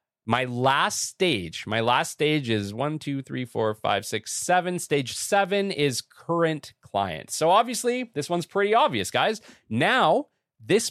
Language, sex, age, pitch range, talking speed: English, male, 30-49, 120-165 Hz, 155 wpm